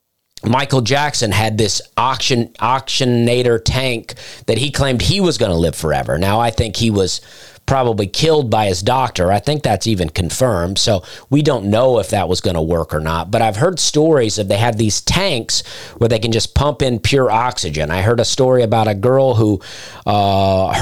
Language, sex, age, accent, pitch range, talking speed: English, male, 40-59, American, 100-130 Hz, 195 wpm